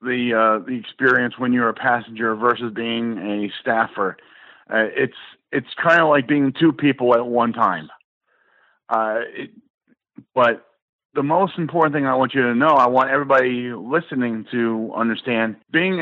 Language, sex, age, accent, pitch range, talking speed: English, male, 40-59, American, 120-140 Hz, 160 wpm